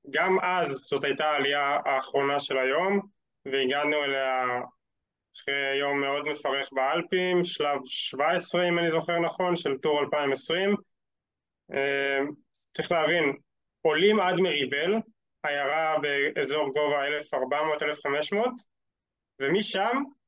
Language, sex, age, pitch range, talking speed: Hebrew, male, 20-39, 140-185 Hz, 100 wpm